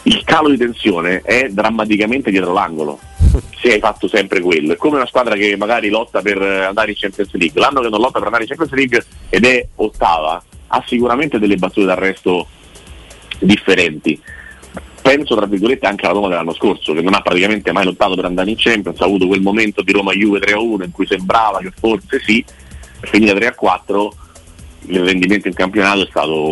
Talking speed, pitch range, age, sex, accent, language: 190 wpm, 85-105 Hz, 40-59, male, native, Italian